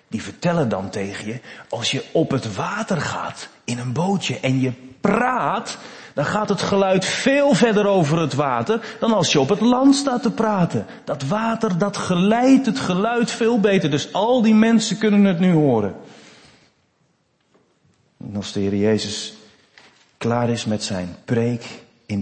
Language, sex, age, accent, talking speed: Dutch, male, 40-59, Dutch, 165 wpm